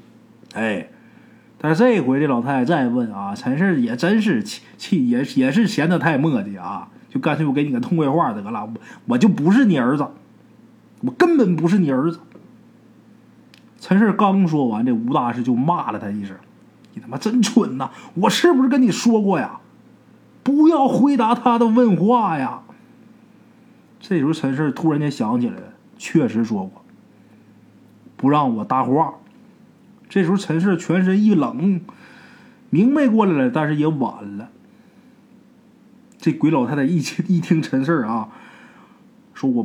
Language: Chinese